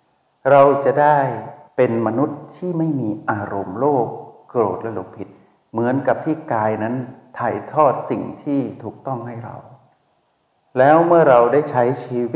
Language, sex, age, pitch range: Thai, male, 60-79, 110-145 Hz